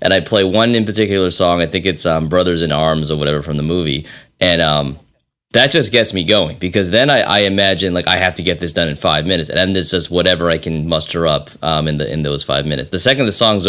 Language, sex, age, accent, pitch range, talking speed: English, male, 30-49, American, 80-100 Hz, 270 wpm